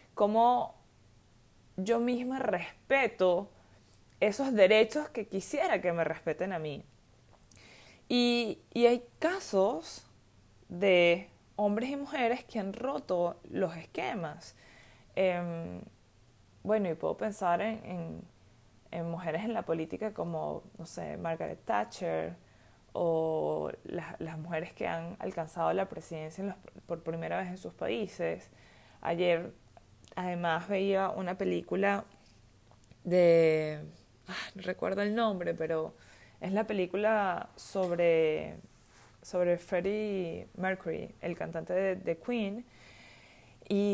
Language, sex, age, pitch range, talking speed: Spanish, female, 20-39, 160-220 Hz, 115 wpm